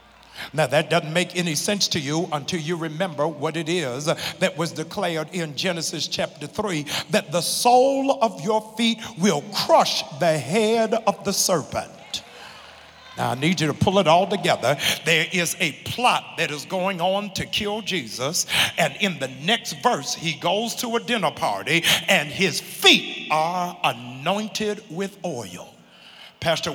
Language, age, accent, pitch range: English, 60-79, American, 165-230 Hz